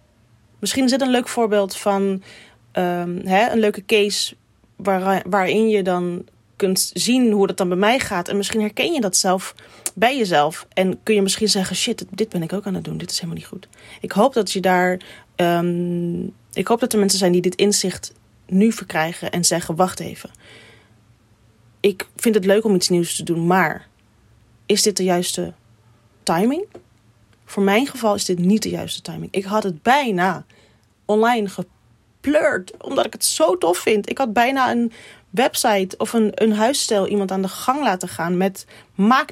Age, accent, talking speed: 30-49, Dutch, 175 wpm